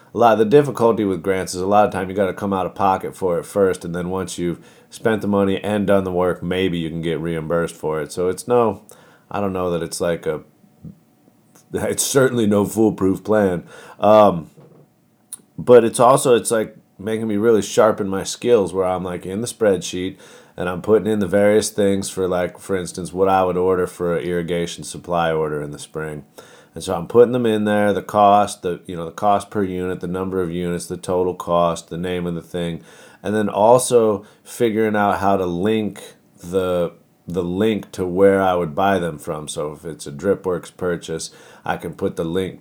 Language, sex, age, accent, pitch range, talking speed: English, male, 30-49, American, 90-105 Hz, 215 wpm